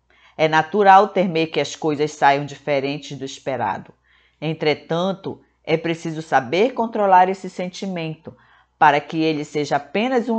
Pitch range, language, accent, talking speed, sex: 155-200 Hz, Portuguese, Brazilian, 135 wpm, female